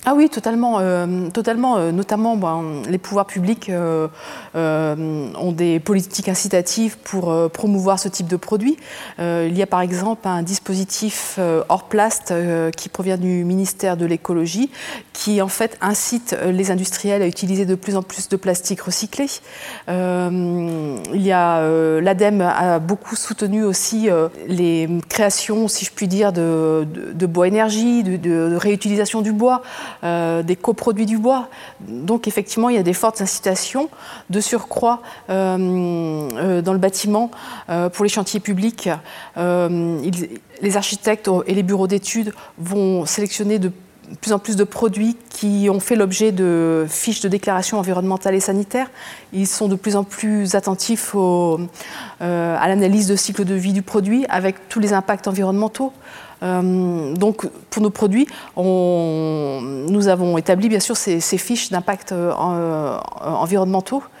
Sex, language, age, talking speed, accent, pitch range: female, French, 30-49, 165 wpm, French, 175-215 Hz